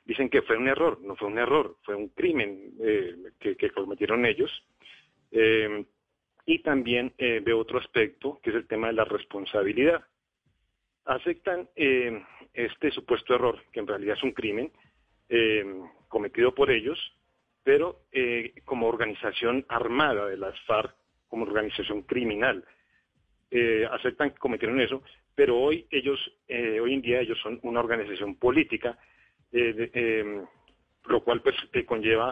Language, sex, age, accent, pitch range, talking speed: Spanish, male, 40-59, Mexican, 110-135 Hz, 150 wpm